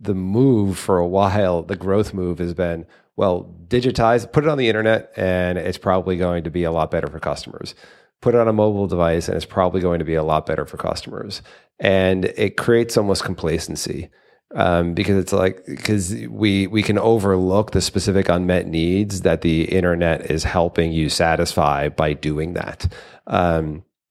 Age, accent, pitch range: 30-49, American, 85-100 Hz